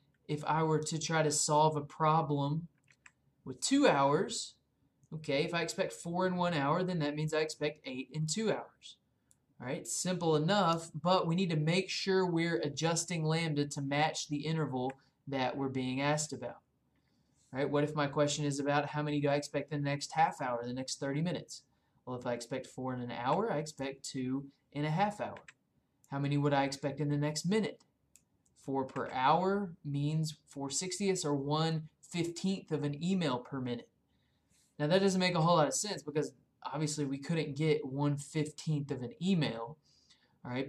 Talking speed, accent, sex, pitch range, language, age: 195 wpm, American, male, 140-165 Hz, English, 20-39